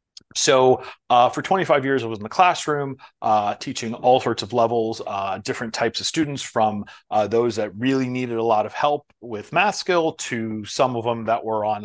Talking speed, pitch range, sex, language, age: 210 wpm, 110-140 Hz, male, English, 30-49